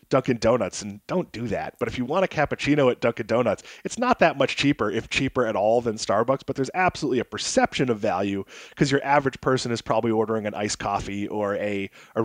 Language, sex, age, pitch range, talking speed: English, male, 30-49, 115-155 Hz, 225 wpm